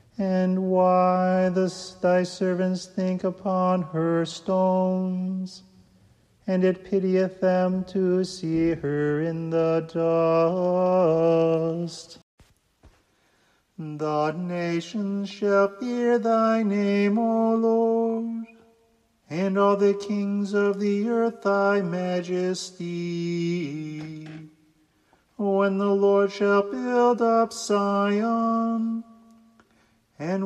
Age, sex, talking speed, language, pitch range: 40-59, male, 85 wpm, English, 170-205 Hz